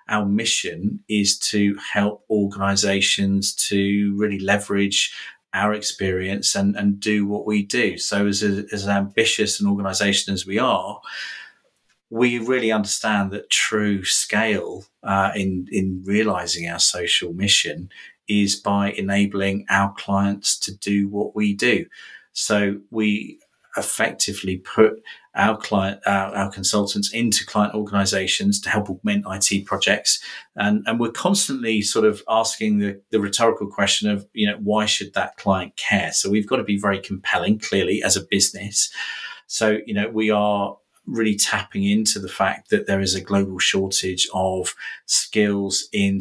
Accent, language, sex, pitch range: British, English, male, 95-105 Hz